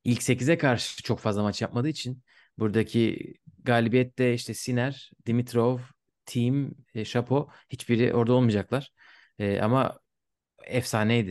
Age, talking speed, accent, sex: 30-49, 115 wpm, native, male